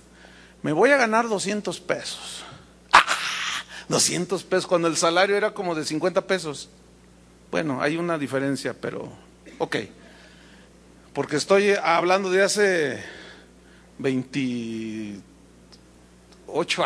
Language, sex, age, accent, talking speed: Spanish, male, 40-59, Mexican, 105 wpm